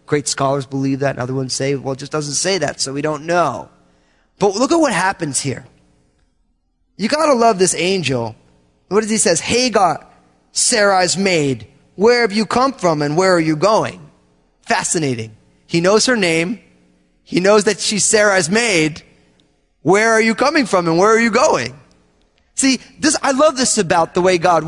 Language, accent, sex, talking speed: English, American, male, 185 wpm